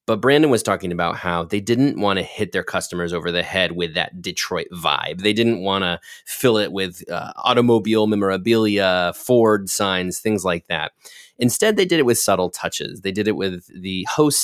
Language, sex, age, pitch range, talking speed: English, male, 30-49, 90-110 Hz, 200 wpm